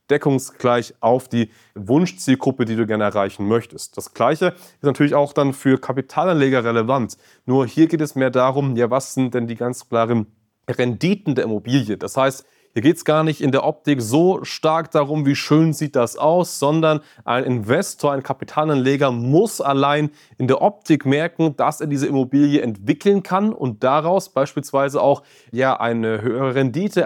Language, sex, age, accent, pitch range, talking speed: German, male, 30-49, German, 125-150 Hz, 170 wpm